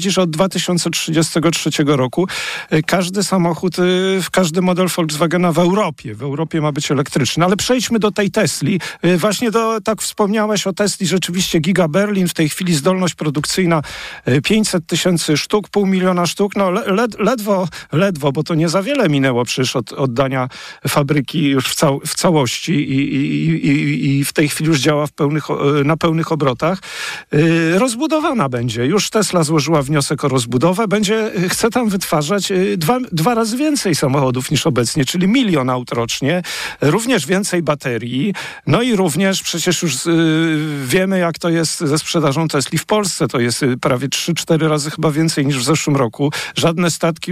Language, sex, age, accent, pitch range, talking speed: Polish, male, 40-59, native, 145-185 Hz, 160 wpm